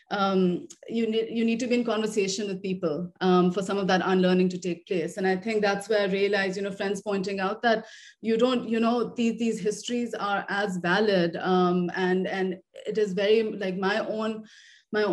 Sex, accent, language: female, Indian, English